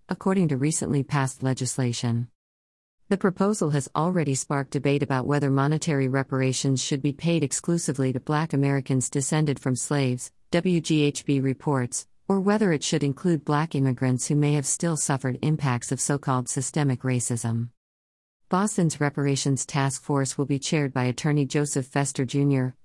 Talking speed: 150 wpm